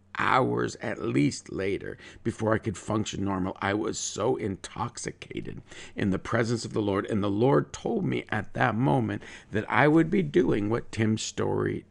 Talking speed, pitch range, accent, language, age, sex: 175 wpm, 95-120 Hz, American, English, 50-69, male